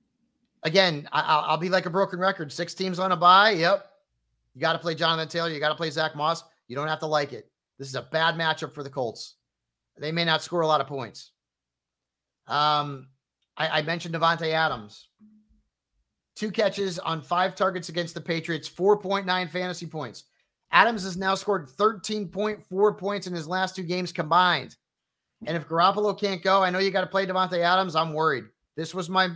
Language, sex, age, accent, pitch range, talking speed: English, male, 30-49, American, 150-195 Hz, 195 wpm